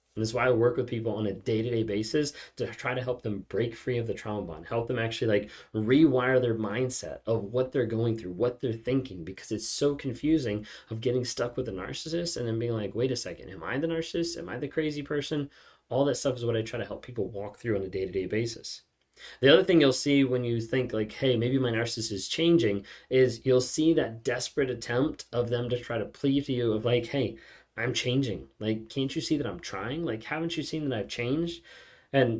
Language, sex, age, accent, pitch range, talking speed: English, male, 20-39, American, 110-135 Hz, 235 wpm